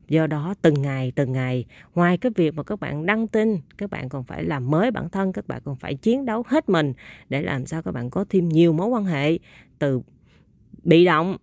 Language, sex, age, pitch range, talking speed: Vietnamese, female, 20-39, 140-190 Hz, 230 wpm